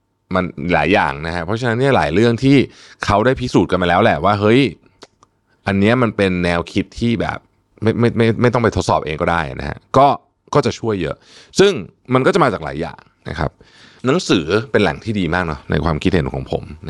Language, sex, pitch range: Thai, male, 80-115 Hz